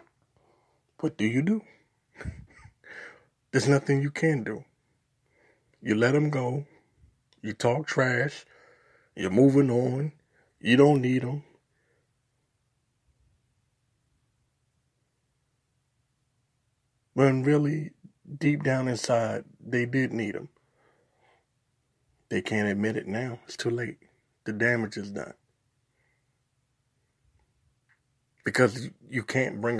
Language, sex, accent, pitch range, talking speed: English, male, American, 120-140 Hz, 95 wpm